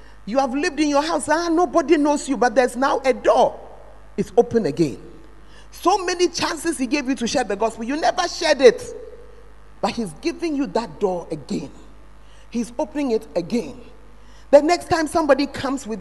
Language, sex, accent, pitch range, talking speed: English, male, Nigerian, 215-330 Hz, 185 wpm